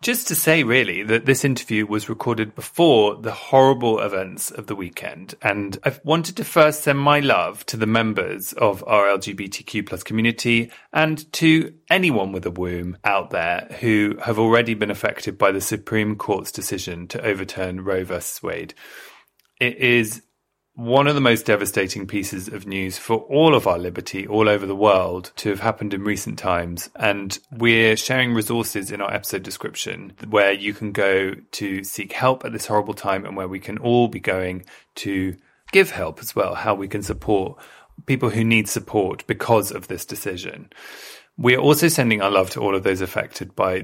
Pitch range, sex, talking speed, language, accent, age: 95-120 Hz, male, 185 wpm, English, British, 30-49